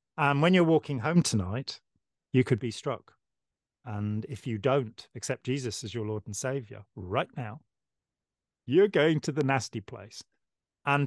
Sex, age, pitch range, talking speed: male, 40-59, 105-135 Hz, 165 wpm